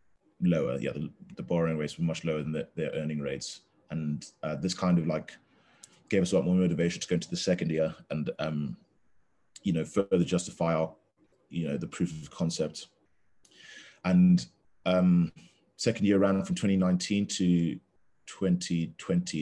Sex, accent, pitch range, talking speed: male, British, 75-90 Hz, 160 wpm